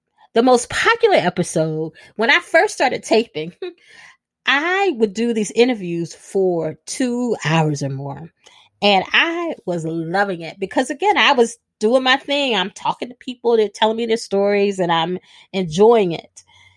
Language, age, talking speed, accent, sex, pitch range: English, 30-49, 155 wpm, American, female, 170-245 Hz